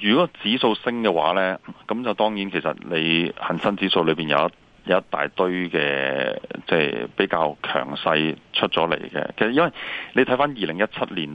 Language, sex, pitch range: Chinese, male, 75-95 Hz